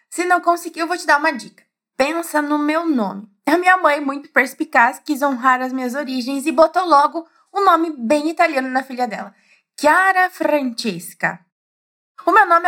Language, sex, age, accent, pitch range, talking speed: Portuguese, female, 20-39, Brazilian, 250-335 Hz, 190 wpm